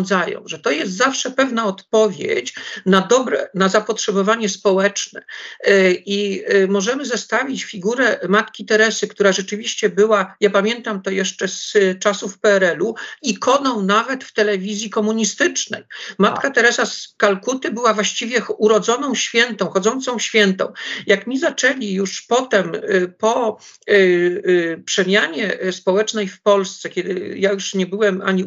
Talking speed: 120 wpm